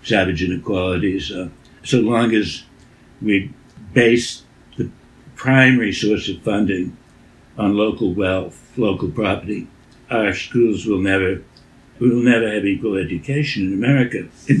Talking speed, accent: 125 wpm, American